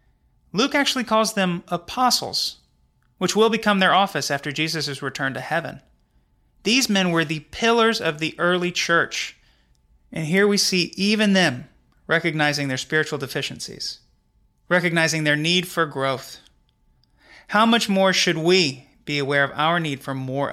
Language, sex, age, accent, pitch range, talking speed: English, male, 30-49, American, 140-185 Hz, 150 wpm